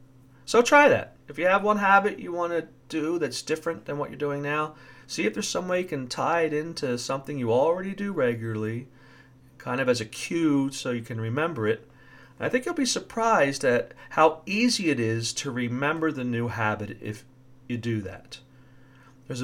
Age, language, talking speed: 40-59, English, 200 wpm